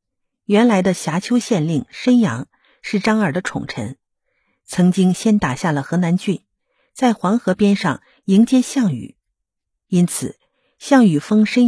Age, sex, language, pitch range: 50-69, female, Chinese, 150-220 Hz